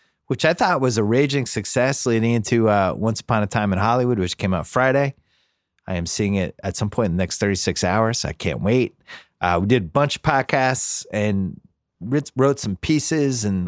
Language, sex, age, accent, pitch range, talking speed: English, male, 30-49, American, 90-125 Hz, 215 wpm